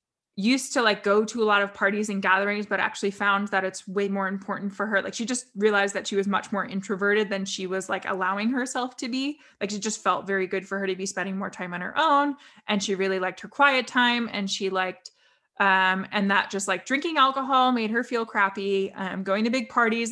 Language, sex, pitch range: English, female, 195-230 Hz